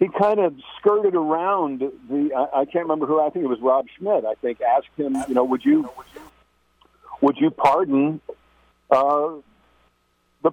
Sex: male